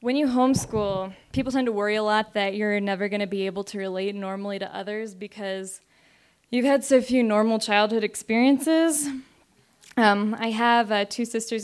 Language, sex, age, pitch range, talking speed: English, female, 10-29, 205-250 Hz, 180 wpm